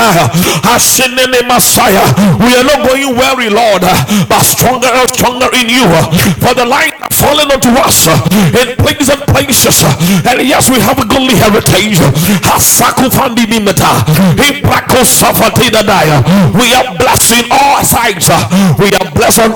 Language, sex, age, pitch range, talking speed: English, male, 50-69, 175-255 Hz, 140 wpm